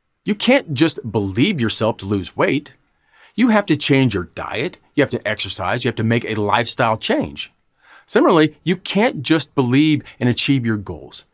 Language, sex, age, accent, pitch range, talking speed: English, male, 40-59, American, 105-155 Hz, 180 wpm